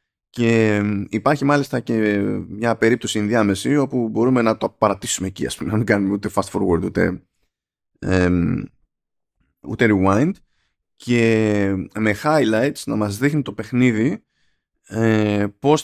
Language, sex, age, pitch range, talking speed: Greek, male, 20-39, 100-125 Hz, 120 wpm